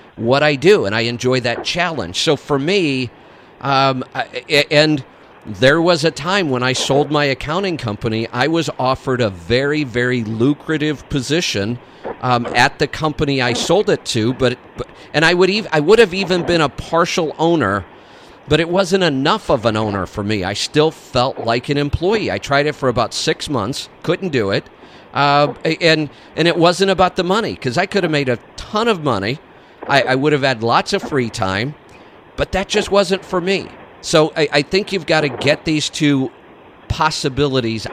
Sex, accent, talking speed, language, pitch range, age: male, American, 190 wpm, English, 120-155 Hz, 50-69